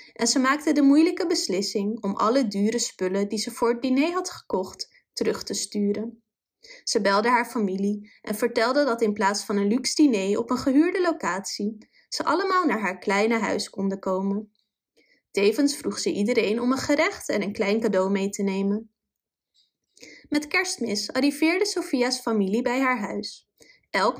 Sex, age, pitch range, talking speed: female, 20-39, 210-300 Hz, 170 wpm